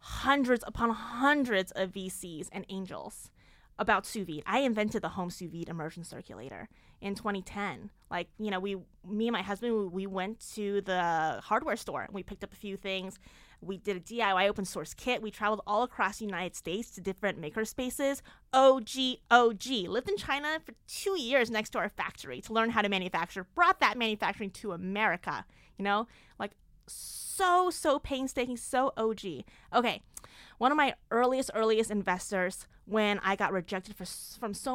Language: English